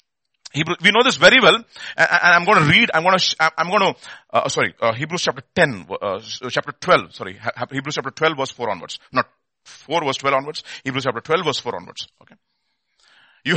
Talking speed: 195 wpm